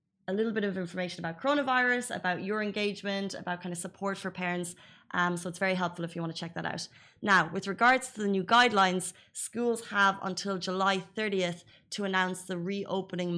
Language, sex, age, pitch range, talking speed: Arabic, female, 20-39, 175-200 Hz, 195 wpm